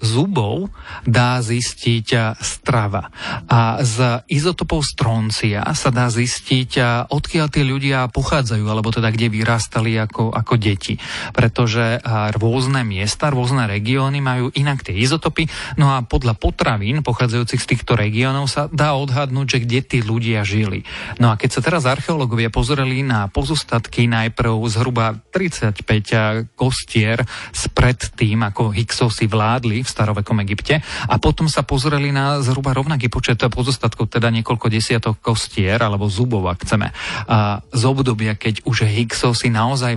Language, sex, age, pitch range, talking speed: Slovak, male, 30-49, 110-135 Hz, 135 wpm